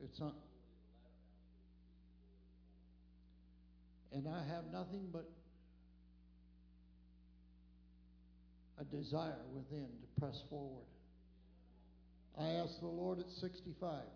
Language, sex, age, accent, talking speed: English, male, 60-79, American, 80 wpm